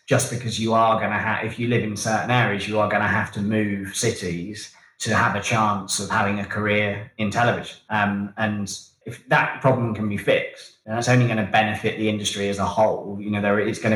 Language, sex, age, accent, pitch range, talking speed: English, male, 20-39, British, 105-120 Hz, 240 wpm